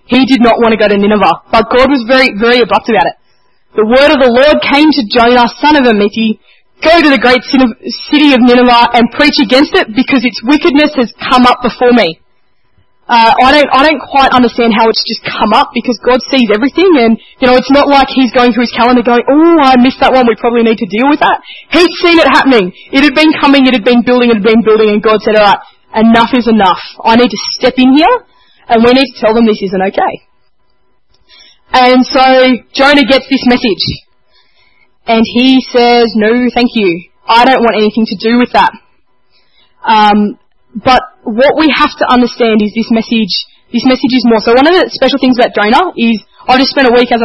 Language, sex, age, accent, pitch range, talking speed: English, female, 20-39, Australian, 225-265 Hz, 220 wpm